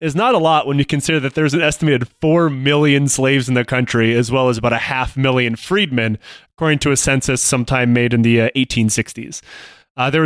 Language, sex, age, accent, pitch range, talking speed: English, male, 30-49, American, 125-165 Hz, 215 wpm